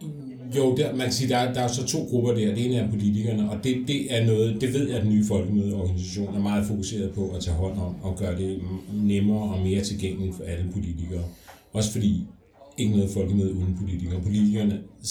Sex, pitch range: male, 95-110 Hz